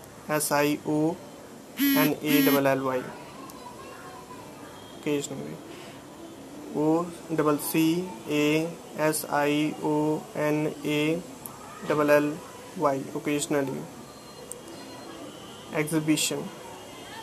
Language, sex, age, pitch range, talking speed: English, male, 20-39, 145-160 Hz, 75 wpm